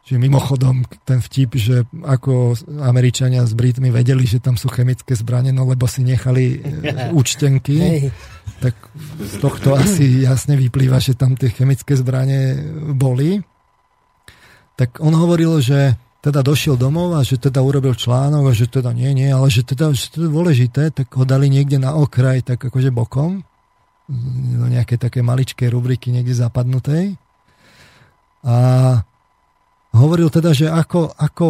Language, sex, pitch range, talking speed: Slovak, male, 120-145 Hz, 150 wpm